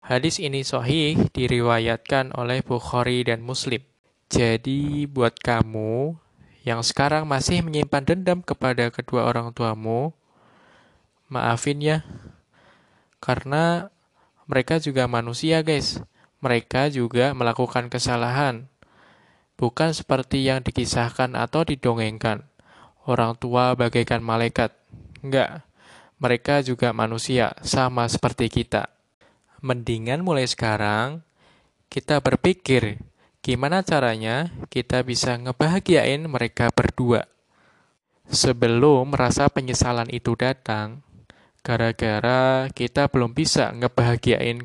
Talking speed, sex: 95 wpm, male